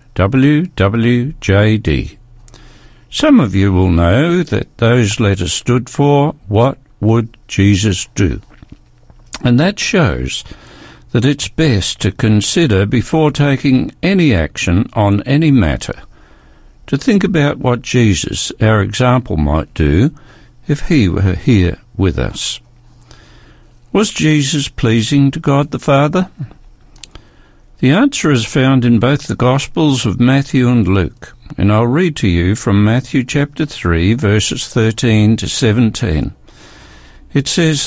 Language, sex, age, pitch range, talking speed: English, male, 60-79, 105-145 Hz, 125 wpm